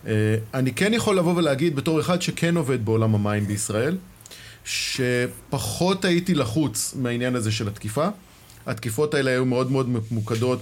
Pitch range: 120-165 Hz